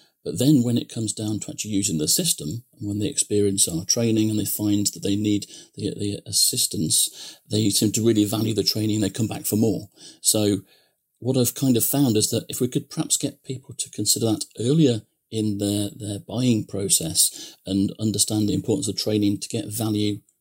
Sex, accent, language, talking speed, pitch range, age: male, British, English, 210 wpm, 105-130 Hz, 40-59